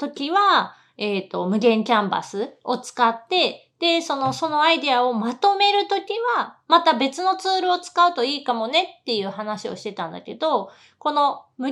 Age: 30-49